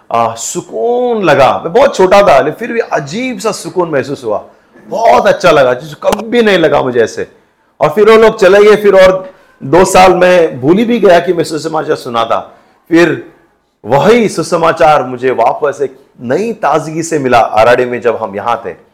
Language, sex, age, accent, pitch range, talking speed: Hindi, male, 40-59, native, 125-210 Hz, 185 wpm